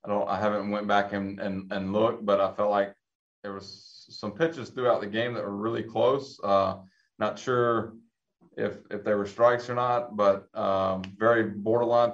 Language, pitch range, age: English, 100-115 Hz, 20-39